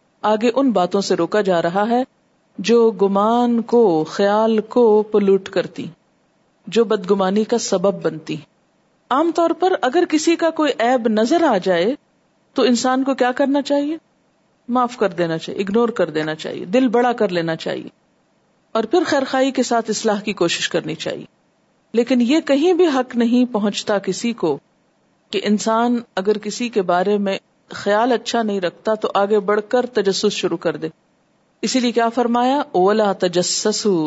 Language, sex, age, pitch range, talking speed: Urdu, female, 50-69, 200-250 Hz, 165 wpm